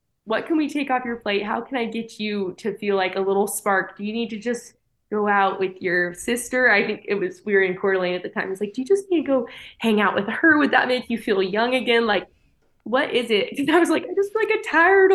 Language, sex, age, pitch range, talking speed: English, female, 20-39, 190-275 Hz, 280 wpm